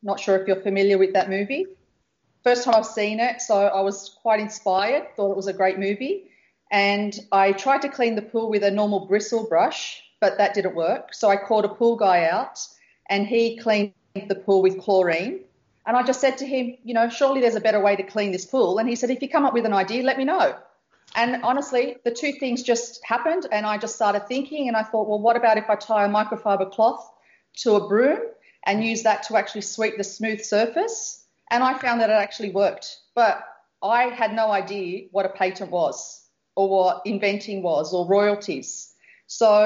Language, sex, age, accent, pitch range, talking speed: English, female, 30-49, Australian, 195-235 Hz, 215 wpm